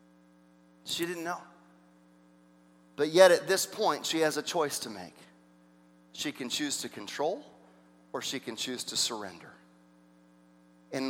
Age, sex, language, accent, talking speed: 40-59, male, English, American, 140 wpm